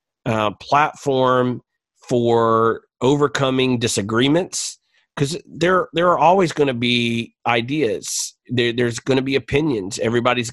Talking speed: 120 wpm